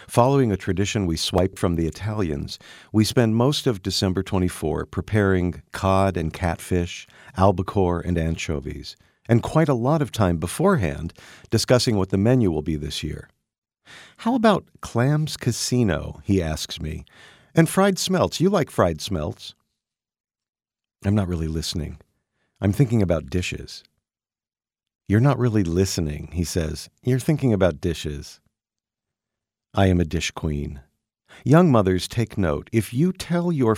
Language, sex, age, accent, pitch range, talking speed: English, male, 50-69, American, 85-115 Hz, 145 wpm